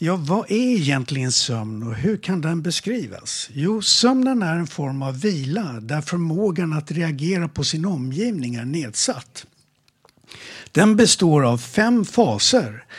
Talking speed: 145 wpm